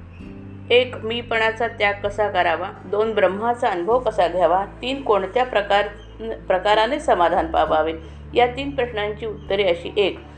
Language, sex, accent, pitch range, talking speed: Marathi, female, native, 185-240 Hz, 125 wpm